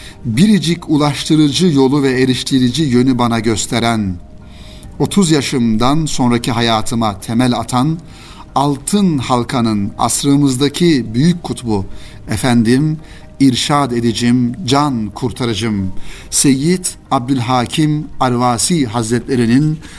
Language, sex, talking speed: Turkish, male, 85 wpm